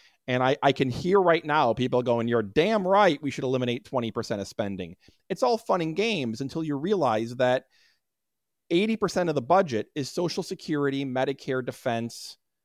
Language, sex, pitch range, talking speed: English, male, 125-170 Hz, 170 wpm